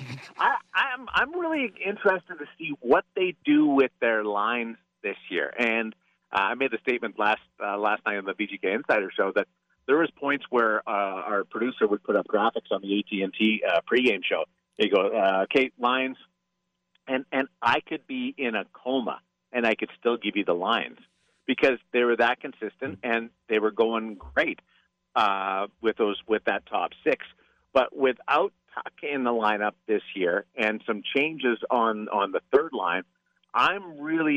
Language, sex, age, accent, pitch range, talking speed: English, male, 50-69, American, 100-130 Hz, 180 wpm